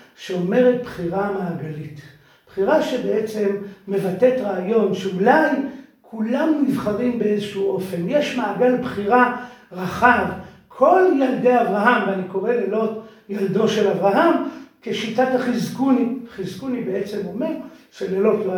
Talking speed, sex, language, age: 105 wpm, male, Hebrew, 50-69